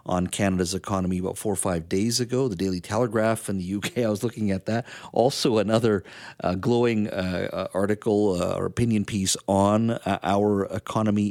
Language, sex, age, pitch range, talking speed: English, male, 50-69, 95-120 Hz, 180 wpm